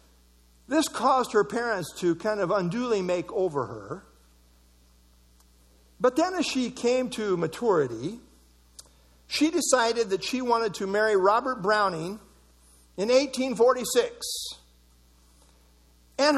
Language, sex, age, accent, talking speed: English, male, 50-69, American, 110 wpm